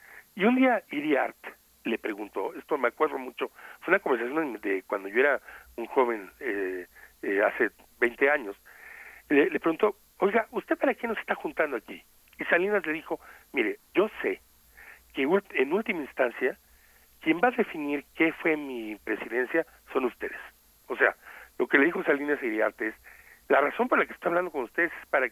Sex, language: male, Spanish